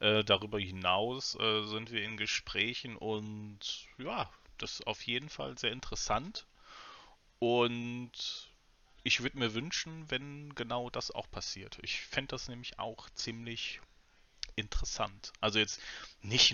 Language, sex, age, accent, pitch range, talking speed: German, male, 30-49, German, 105-120 Hz, 135 wpm